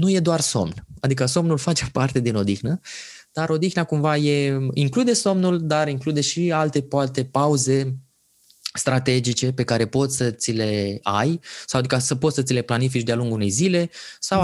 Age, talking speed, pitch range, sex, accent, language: 20-39, 180 wpm, 125-160 Hz, male, native, Romanian